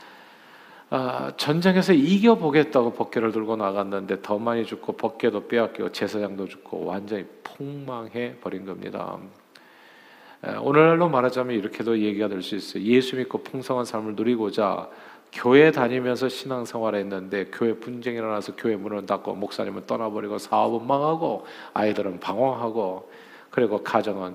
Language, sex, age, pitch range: Korean, male, 40-59, 110-160 Hz